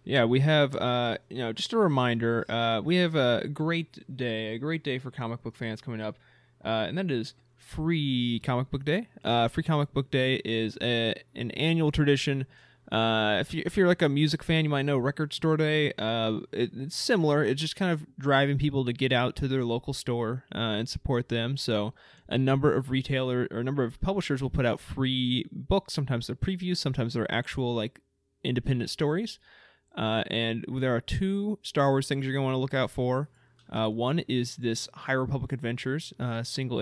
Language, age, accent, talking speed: English, 20-39, American, 205 wpm